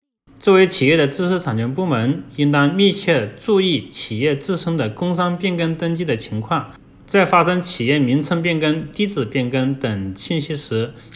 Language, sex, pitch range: Chinese, male, 135-175 Hz